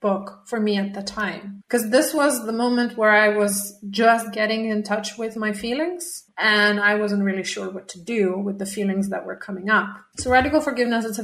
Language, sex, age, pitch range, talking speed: English, female, 30-49, 195-230 Hz, 220 wpm